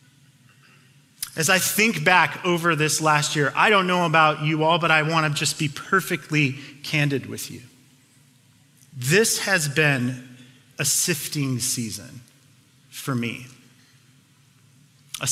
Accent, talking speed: American, 130 wpm